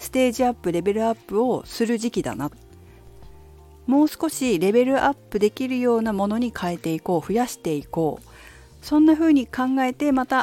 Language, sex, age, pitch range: Japanese, female, 50-69, 145-240 Hz